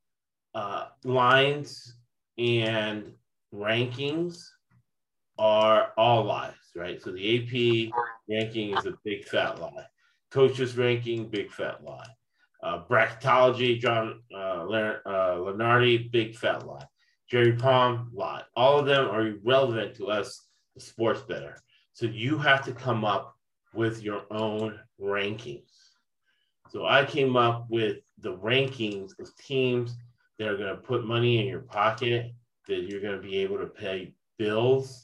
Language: English